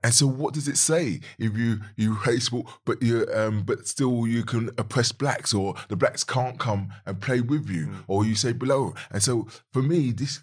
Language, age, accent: English, 20-39, British